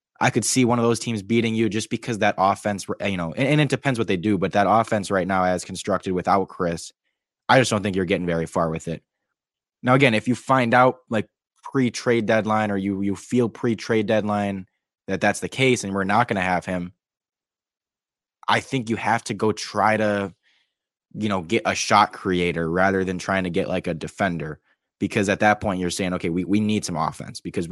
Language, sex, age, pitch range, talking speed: English, male, 10-29, 90-110 Hz, 225 wpm